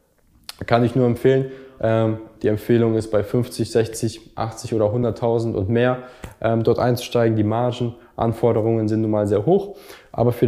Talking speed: 150 wpm